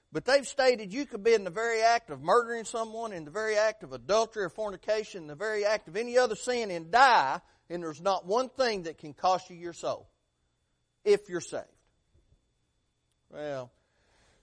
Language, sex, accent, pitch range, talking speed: English, male, American, 155-230 Hz, 190 wpm